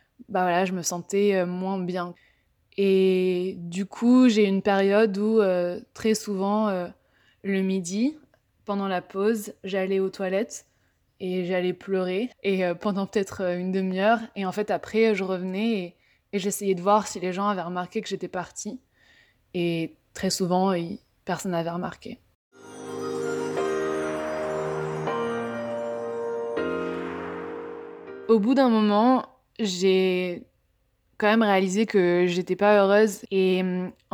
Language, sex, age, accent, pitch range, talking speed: French, female, 20-39, French, 185-215 Hz, 130 wpm